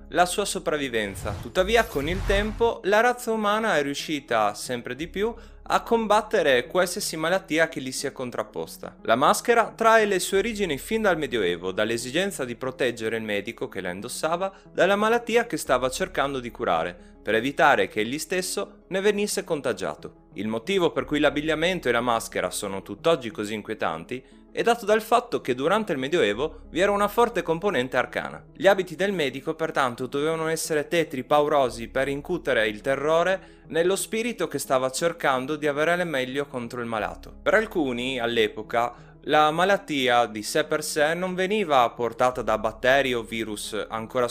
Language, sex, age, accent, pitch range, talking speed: Italian, male, 30-49, native, 120-190 Hz, 165 wpm